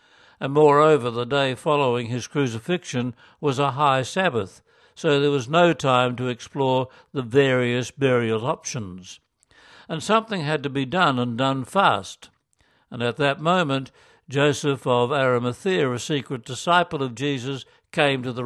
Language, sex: English, male